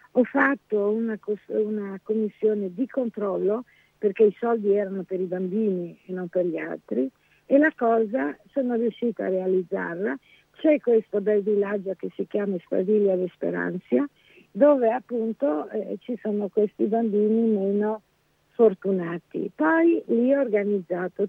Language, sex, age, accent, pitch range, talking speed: Italian, female, 50-69, native, 190-225 Hz, 135 wpm